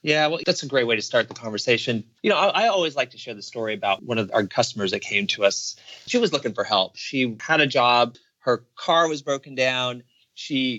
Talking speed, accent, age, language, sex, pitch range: 245 wpm, American, 30-49, English, male, 115-130 Hz